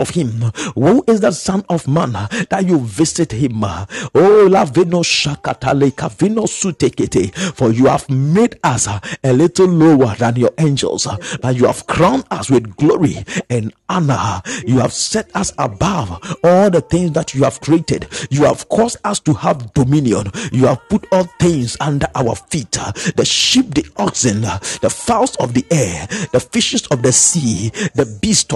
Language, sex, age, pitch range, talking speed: English, male, 50-69, 135-180 Hz, 160 wpm